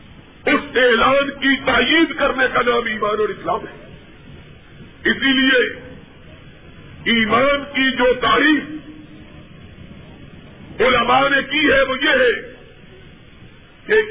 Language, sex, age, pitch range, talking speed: Urdu, male, 50-69, 265-305 Hz, 100 wpm